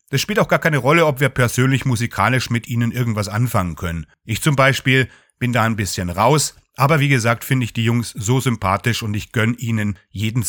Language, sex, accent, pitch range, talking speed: German, male, German, 105-135 Hz, 210 wpm